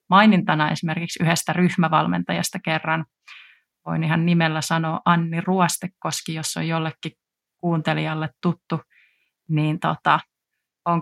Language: Finnish